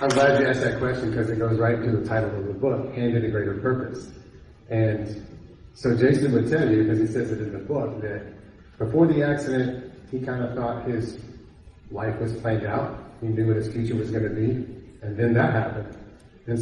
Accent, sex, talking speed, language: American, male, 215 wpm, English